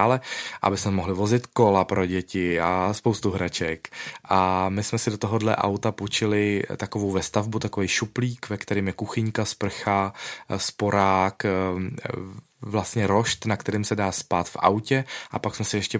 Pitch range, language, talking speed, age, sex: 95-110 Hz, Czech, 160 wpm, 20-39, male